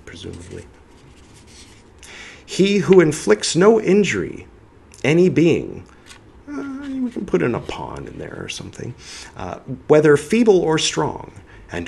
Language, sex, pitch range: English, male, 95-160 Hz